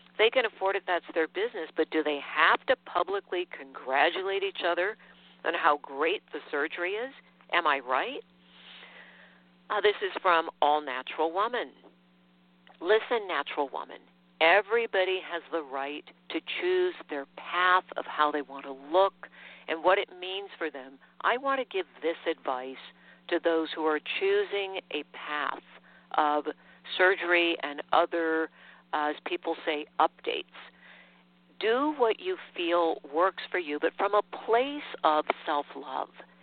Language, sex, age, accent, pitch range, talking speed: English, female, 50-69, American, 150-215 Hz, 145 wpm